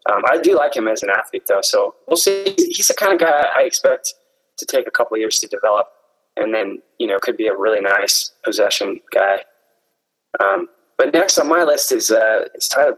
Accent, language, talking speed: American, English, 225 wpm